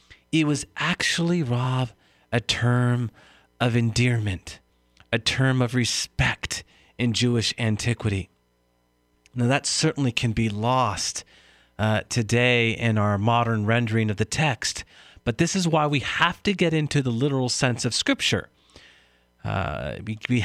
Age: 40-59